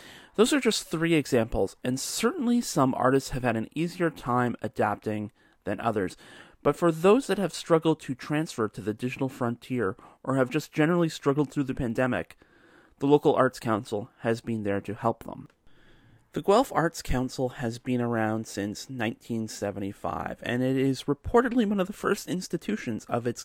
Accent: American